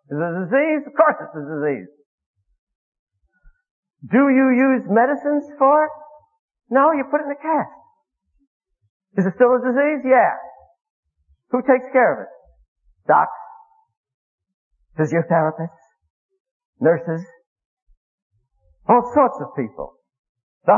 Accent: American